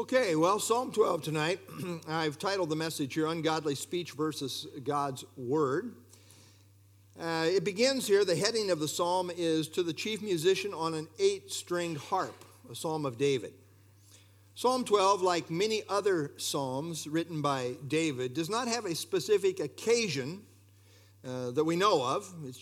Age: 50-69